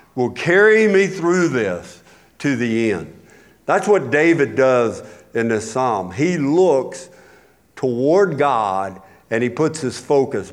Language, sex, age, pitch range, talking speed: English, male, 50-69, 130-205 Hz, 135 wpm